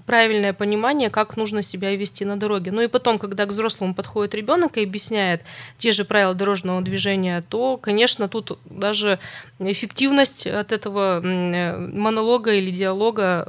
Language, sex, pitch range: Russian, female, 180-215 Hz